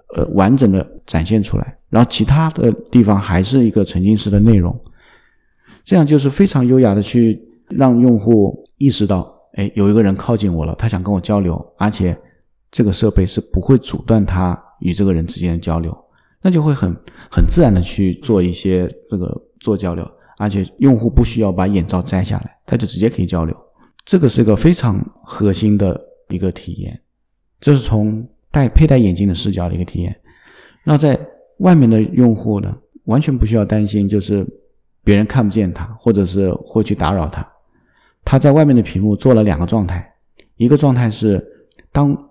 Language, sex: Chinese, male